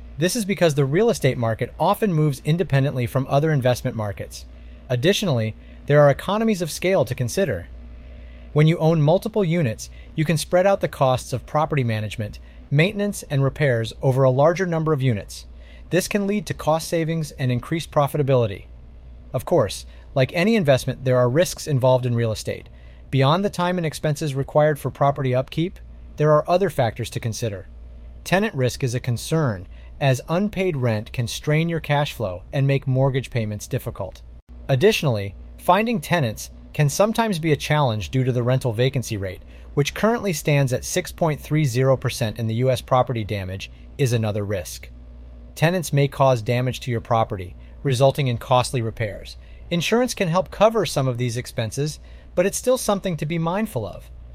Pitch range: 110-160 Hz